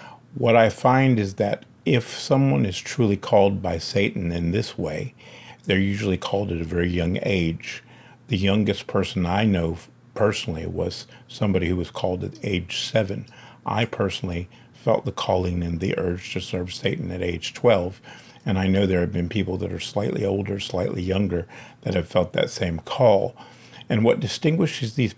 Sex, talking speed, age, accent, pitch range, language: male, 175 wpm, 50-69, American, 90-110 Hz, English